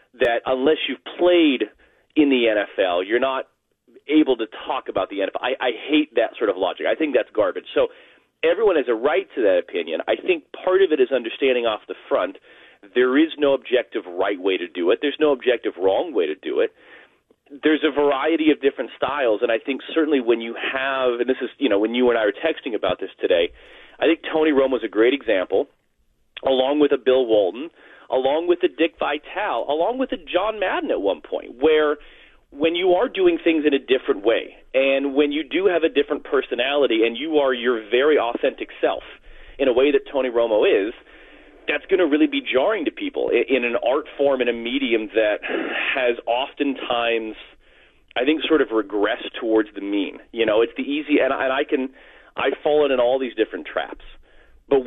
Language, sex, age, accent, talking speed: English, male, 30-49, American, 210 wpm